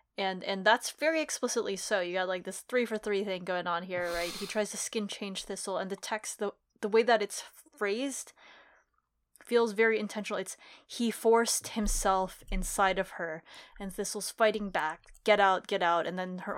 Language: English